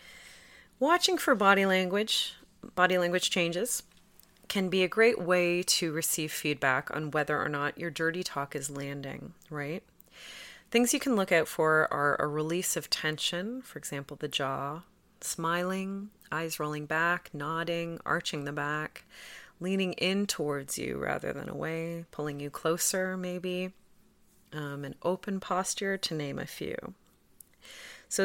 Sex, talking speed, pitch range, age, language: female, 145 wpm, 150-190 Hz, 30-49, English